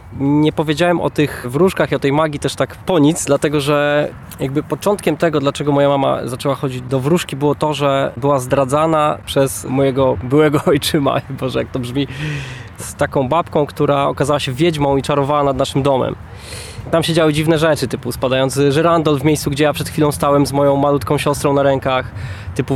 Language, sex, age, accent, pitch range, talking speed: Polish, male, 20-39, native, 135-155 Hz, 190 wpm